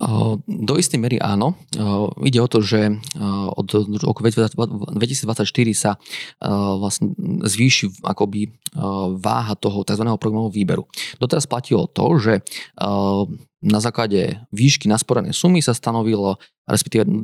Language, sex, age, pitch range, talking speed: Slovak, male, 20-39, 100-125 Hz, 110 wpm